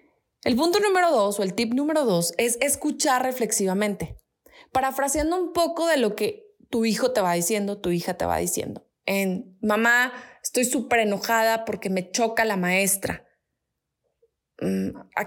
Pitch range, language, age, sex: 195-255 Hz, Spanish, 20-39, female